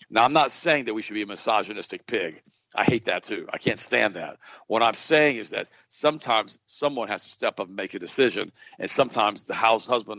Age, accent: 50-69, American